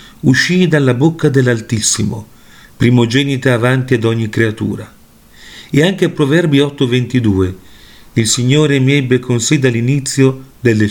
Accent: native